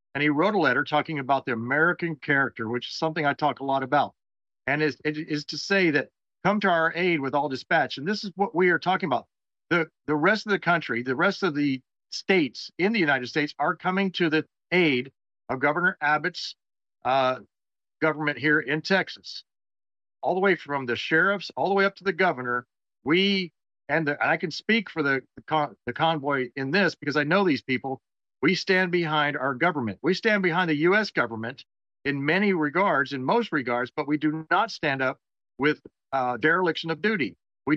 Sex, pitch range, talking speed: male, 135-180 Hz, 205 wpm